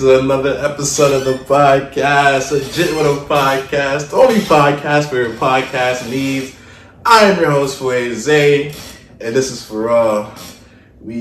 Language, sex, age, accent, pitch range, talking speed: English, male, 20-39, American, 95-130 Hz, 150 wpm